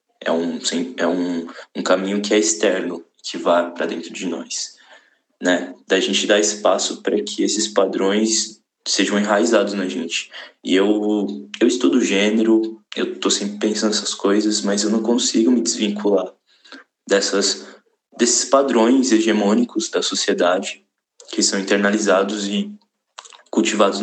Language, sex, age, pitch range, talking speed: Portuguese, male, 20-39, 95-110 Hz, 140 wpm